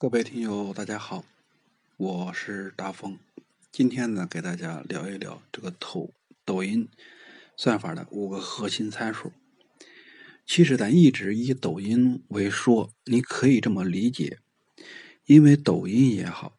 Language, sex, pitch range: Chinese, male, 105-150 Hz